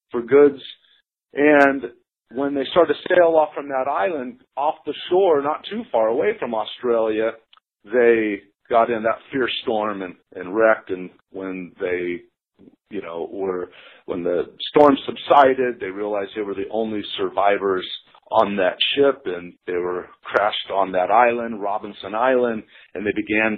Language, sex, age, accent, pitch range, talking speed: English, male, 50-69, American, 110-150 Hz, 160 wpm